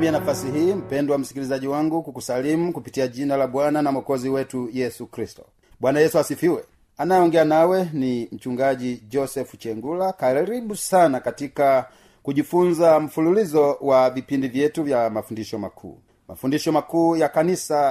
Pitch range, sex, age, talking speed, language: 135-175 Hz, male, 40-59, 135 wpm, Swahili